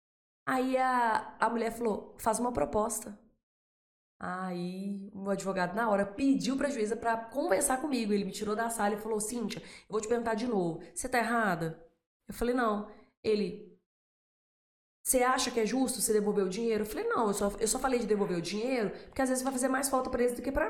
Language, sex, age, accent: Portuguese, female, 20-39, Brazilian